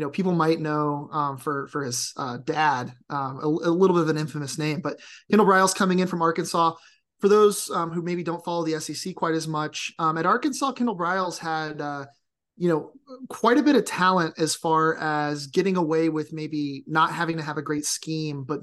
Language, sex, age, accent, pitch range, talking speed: English, male, 30-49, American, 150-175 Hz, 215 wpm